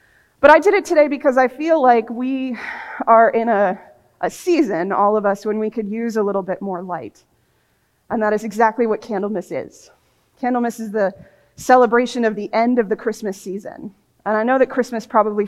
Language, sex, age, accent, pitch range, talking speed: English, female, 30-49, American, 205-245 Hz, 200 wpm